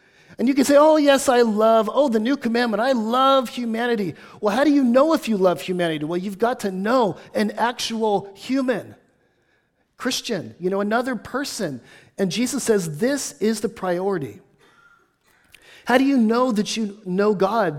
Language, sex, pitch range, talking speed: English, male, 155-225 Hz, 175 wpm